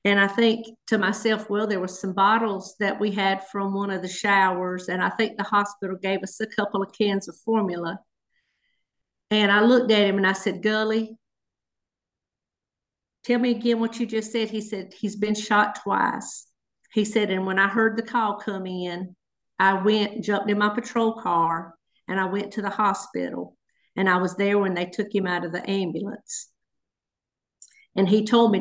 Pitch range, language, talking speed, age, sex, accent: 190-225 Hz, English, 195 wpm, 50-69, female, American